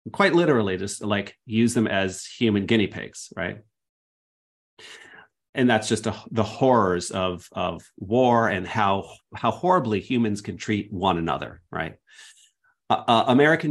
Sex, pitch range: male, 95-120 Hz